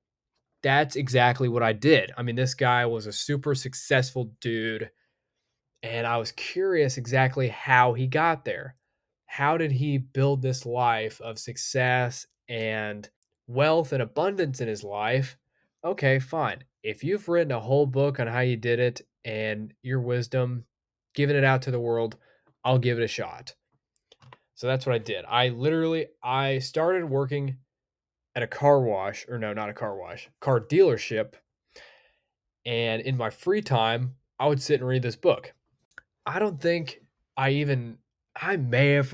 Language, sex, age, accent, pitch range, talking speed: English, male, 20-39, American, 120-140 Hz, 165 wpm